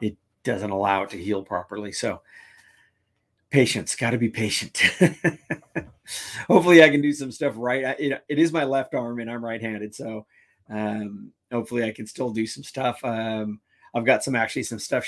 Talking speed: 170 wpm